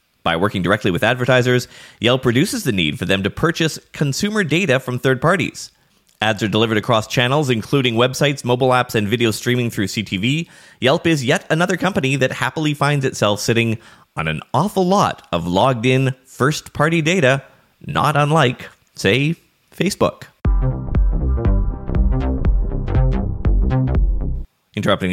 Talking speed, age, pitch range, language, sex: 130 wpm, 20-39, 105-150 Hz, English, male